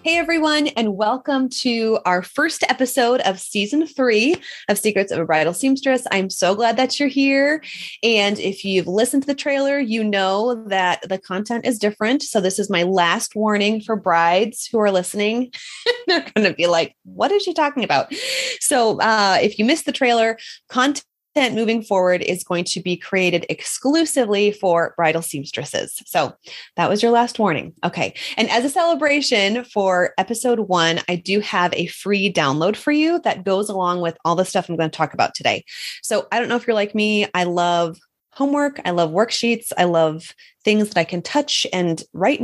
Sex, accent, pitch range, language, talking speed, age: female, American, 185-265 Hz, English, 190 wpm, 30-49